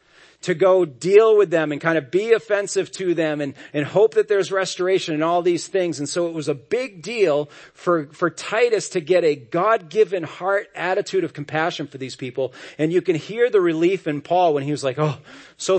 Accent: American